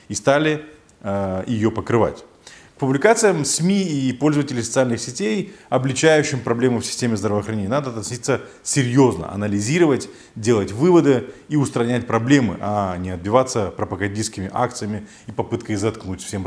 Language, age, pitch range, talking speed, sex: Russian, 30-49, 105-135 Hz, 130 wpm, male